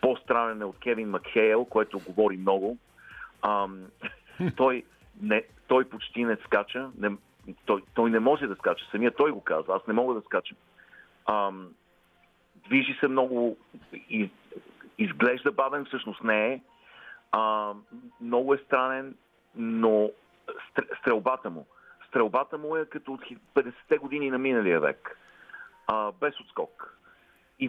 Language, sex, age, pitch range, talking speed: Bulgarian, male, 40-59, 110-150 Hz, 135 wpm